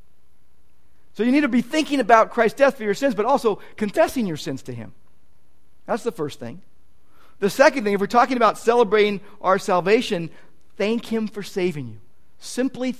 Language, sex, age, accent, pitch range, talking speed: English, male, 50-69, American, 125-210 Hz, 180 wpm